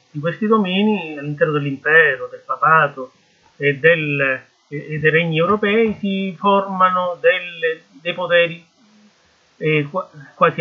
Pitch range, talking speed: 150-200 Hz, 105 wpm